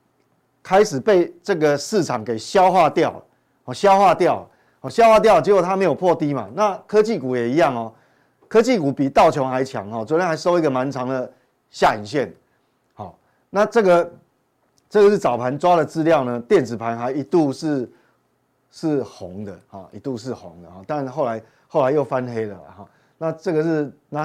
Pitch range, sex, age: 130-190 Hz, male, 30-49